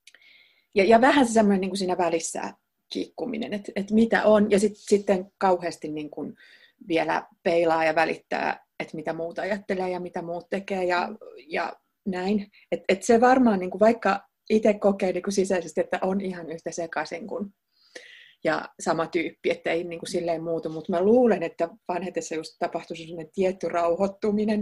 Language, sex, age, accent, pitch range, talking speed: Finnish, female, 30-49, native, 170-215 Hz, 170 wpm